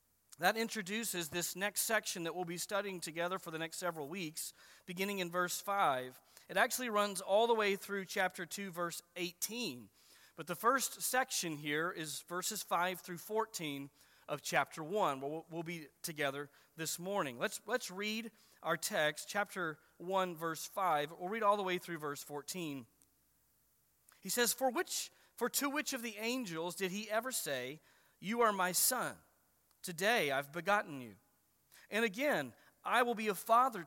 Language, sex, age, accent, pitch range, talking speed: English, male, 40-59, American, 160-215 Hz, 165 wpm